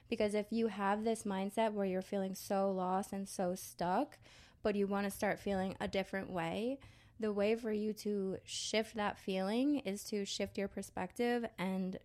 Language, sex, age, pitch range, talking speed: English, female, 20-39, 185-210 Hz, 185 wpm